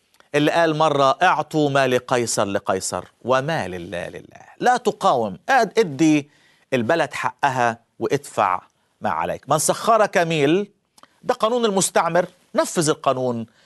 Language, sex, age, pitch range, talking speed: Persian, male, 50-69, 115-185 Hz, 120 wpm